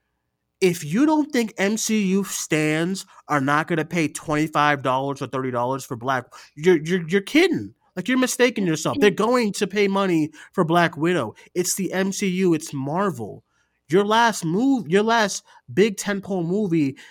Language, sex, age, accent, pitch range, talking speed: English, male, 30-49, American, 135-195 Hz, 170 wpm